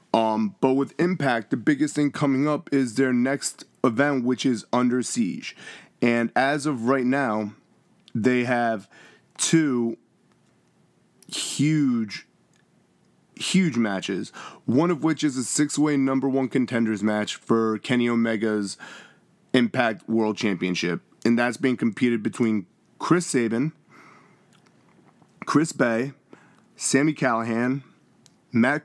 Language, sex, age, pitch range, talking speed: English, male, 30-49, 115-140 Hz, 115 wpm